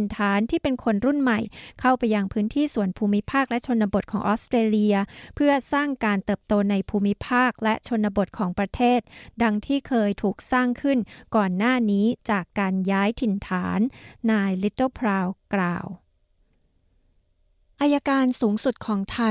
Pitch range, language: 195-235 Hz, Thai